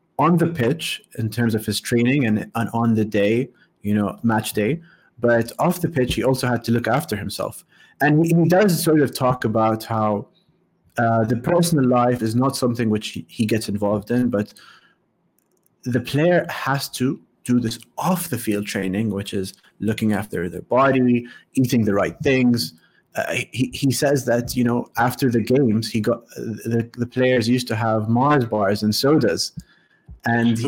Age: 30-49